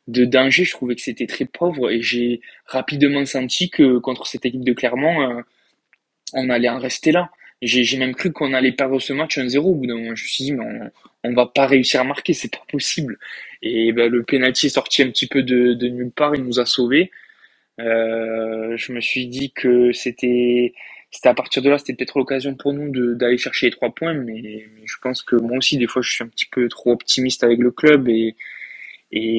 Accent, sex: French, male